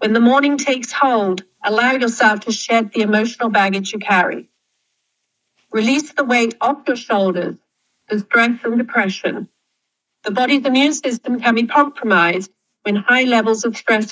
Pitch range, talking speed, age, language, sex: 210-270 Hz, 155 wpm, 50-69, English, female